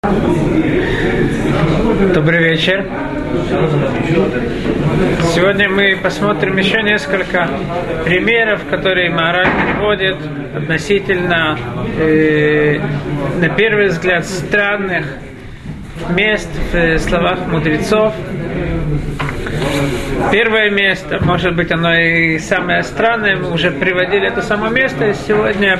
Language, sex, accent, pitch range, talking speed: Russian, male, native, 165-205 Hz, 85 wpm